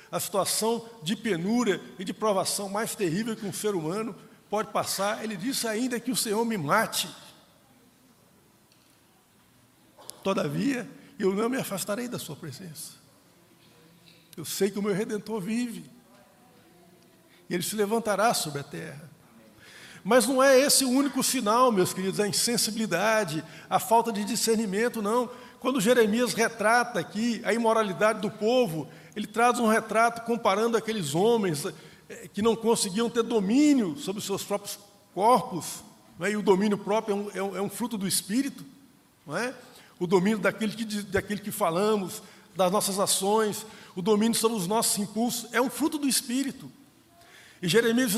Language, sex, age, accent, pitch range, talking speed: Portuguese, male, 60-79, Brazilian, 190-230 Hz, 155 wpm